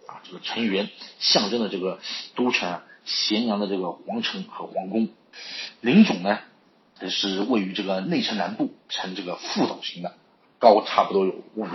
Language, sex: Chinese, male